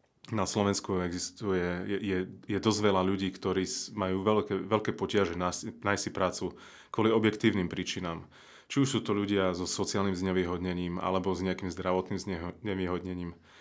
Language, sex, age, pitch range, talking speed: Slovak, male, 30-49, 90-105 Hz, 140 wpm